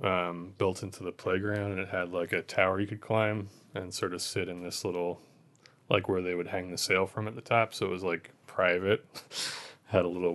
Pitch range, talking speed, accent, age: 90-105 Hz, 230 wpm, American, 20-39